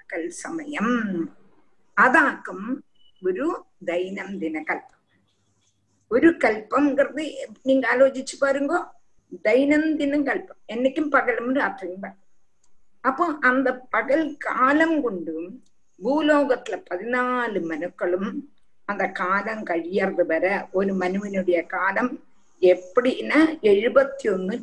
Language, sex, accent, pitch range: Tamil, female, native, 195-295 Hz